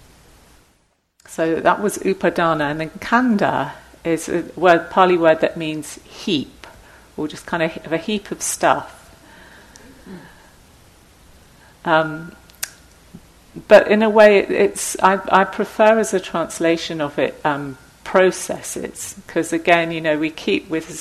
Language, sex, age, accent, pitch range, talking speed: English, female, 50-69, British, 150-185 Hz, 135 wpm